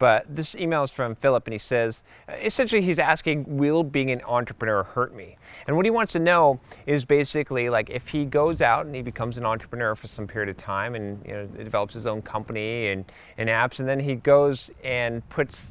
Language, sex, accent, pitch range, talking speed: English, male, American, 115-155 Hz, 215 wpm